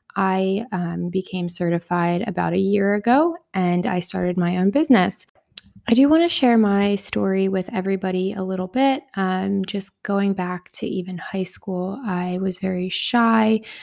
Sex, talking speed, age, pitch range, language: female, 165 wpm, 20-39, 175-200 Hz, English